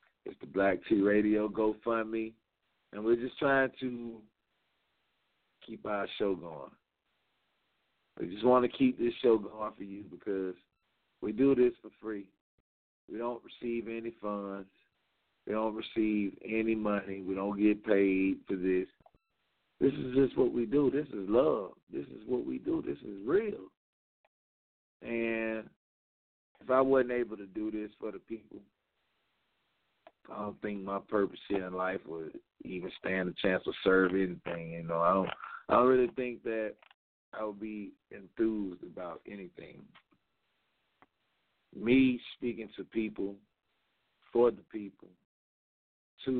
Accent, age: American, 50-69